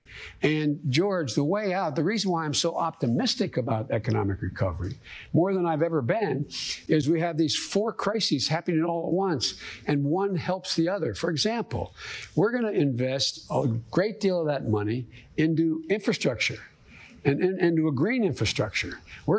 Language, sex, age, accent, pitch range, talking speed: English, male, 60-79, American, 135-180 Hz, 175 wpm